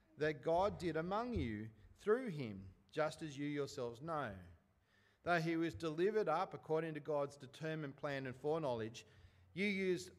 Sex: male